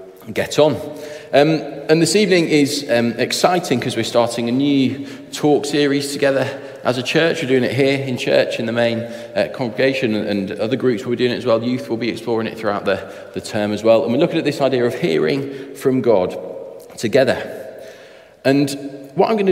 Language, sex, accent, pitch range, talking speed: English, male, British, 105-140 Hz, 205 wpm